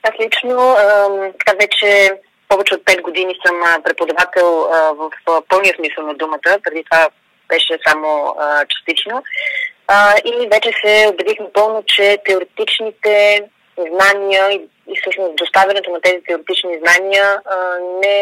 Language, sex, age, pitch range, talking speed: Bulgarian, female, 20-39, 175-210 Hz, 120 wpm